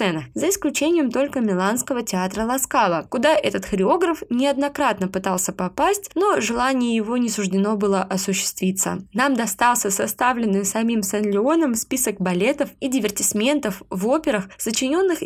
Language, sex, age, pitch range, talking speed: Russian, female, 20-39, 195-275 Hz, 120 wpm